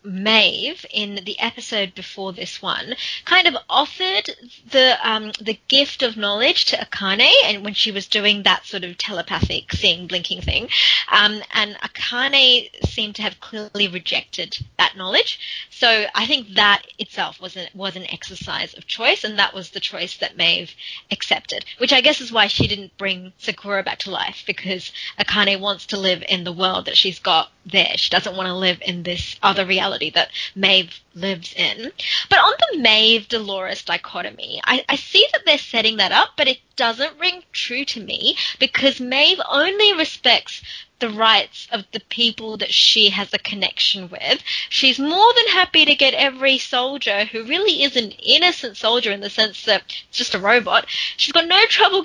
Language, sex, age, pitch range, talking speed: English, female, 30-49, 200-275 Hz, 180 wpm